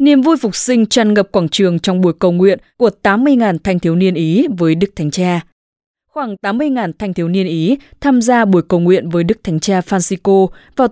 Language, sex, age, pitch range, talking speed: English, female, 20-39, 175-230 Hz, 215 wpm